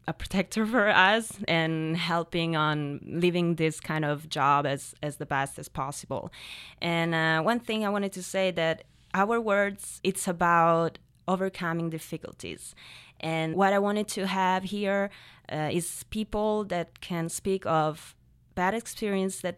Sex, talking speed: female, 155 wpm